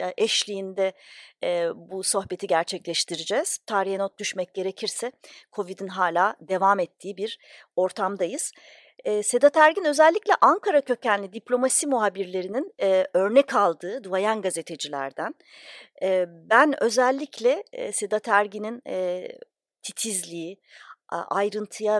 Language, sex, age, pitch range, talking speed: Turkish, female, 40-59, 190-275 Hz, 85 wpm